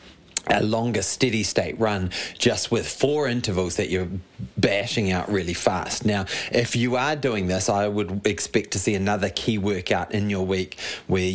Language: English